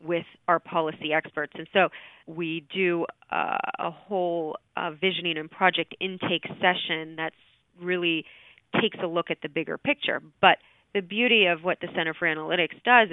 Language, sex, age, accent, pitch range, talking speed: English, female, 30-49, American, 160-185 Hz, 165 wpm